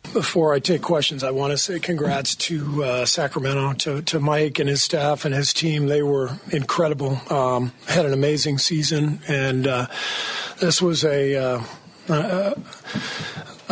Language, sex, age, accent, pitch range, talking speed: English, male, 40-59, American, 135-160 Hz, 155 wpm